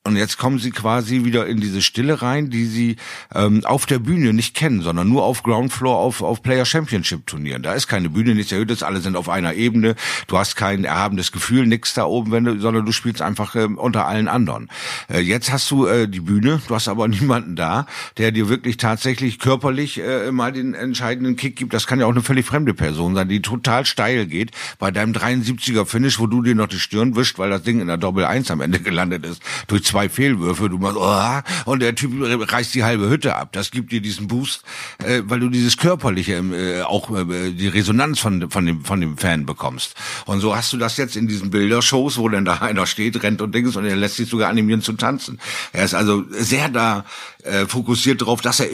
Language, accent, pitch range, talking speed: German, German, 100-125 Hz, 215 wpm